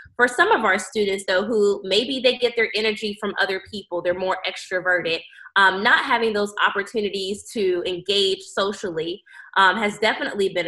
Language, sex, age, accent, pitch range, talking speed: English, female, 20-39, American, 185-225 Hz, 170 wpm